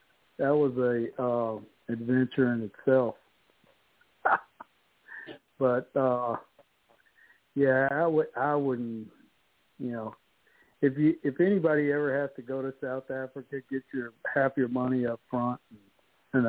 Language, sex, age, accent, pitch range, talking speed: English, male, 60-79, American, 120-140 Hz, 125 wpm